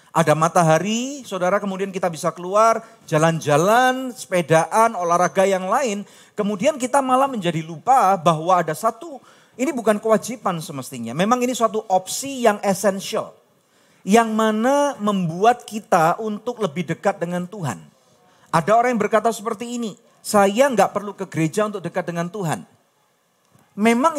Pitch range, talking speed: 185-240 Hz, 135 wpm